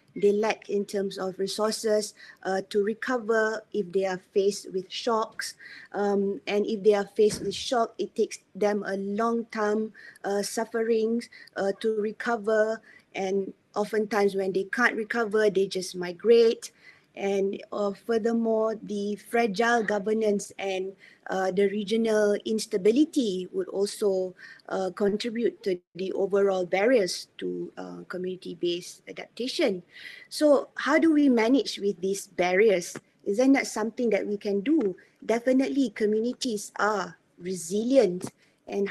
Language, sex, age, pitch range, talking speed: Malay, female, 20-39, 195-230 Hz, 135 wpm